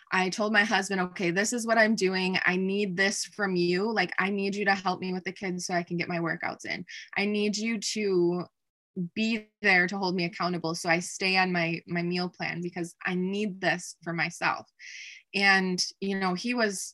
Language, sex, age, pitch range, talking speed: English, female, 20-39, 175-215 Hz, 215 wpm